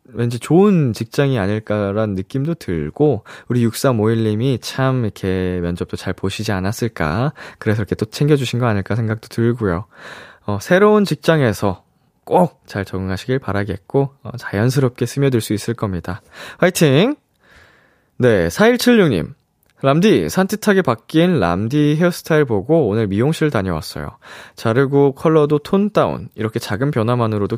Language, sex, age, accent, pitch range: Korean, male, 20-39, native, 100-140 Hz